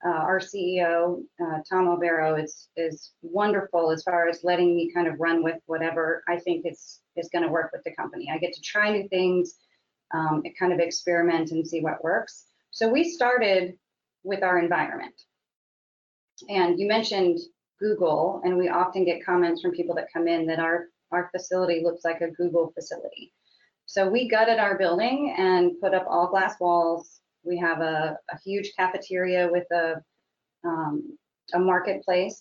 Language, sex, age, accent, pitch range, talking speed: English, female, 30-49, American, 170-200 Hz, 175 wpm